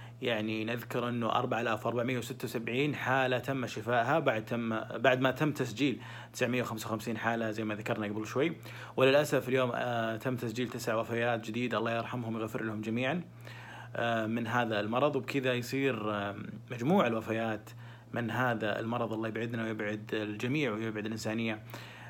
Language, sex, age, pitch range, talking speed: Arabic, male, 30-49, 110-125 Hz, 130 wpm